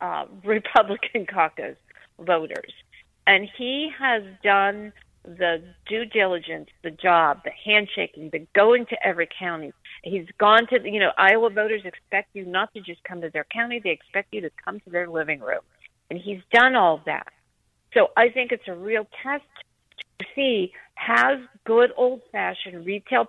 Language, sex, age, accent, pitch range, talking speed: English, female, 50-69, American, 185-250 Hz, 160 wpm